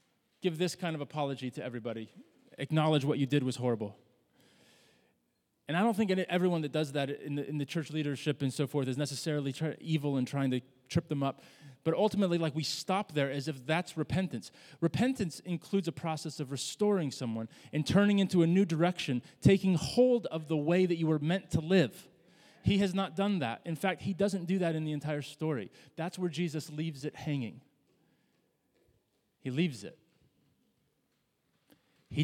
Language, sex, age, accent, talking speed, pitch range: English, male, 30-49, American, 180 wpm, 150-185 Hz